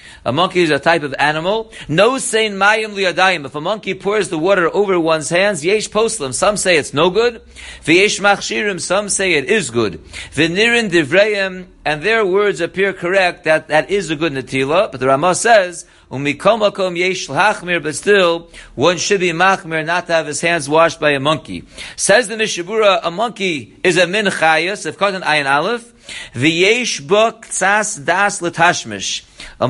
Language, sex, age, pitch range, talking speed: English, male, 50-69, 165-210 Hz, 180 wpm